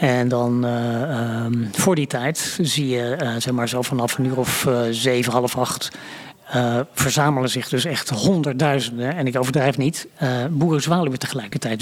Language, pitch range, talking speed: Dutch, 130-165 Hz, 175 wpm